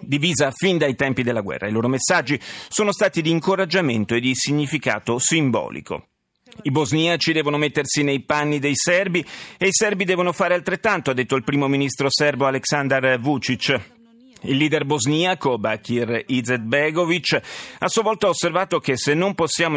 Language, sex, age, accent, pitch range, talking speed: Italian, male, 40-59, native, 125-165 Hz, 160 wpm